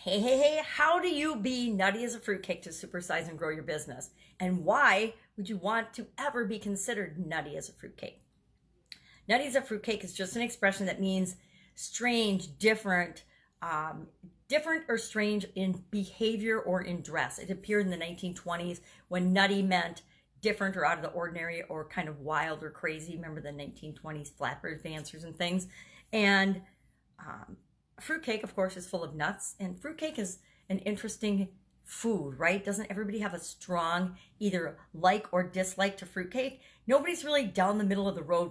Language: English